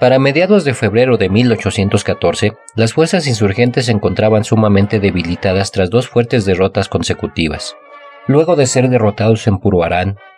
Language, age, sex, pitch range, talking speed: Spanish, 40-59, male, 100-125 Hz, 140 wpm